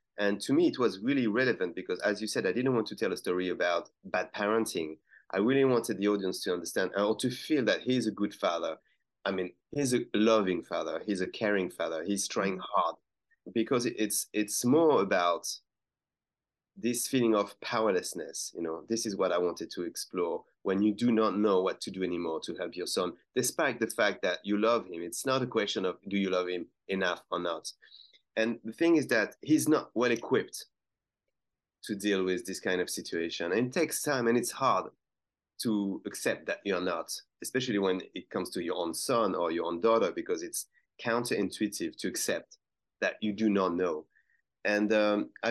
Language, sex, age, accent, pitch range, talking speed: English, male, 30-49, French, 95-120 Hz, 200 wpm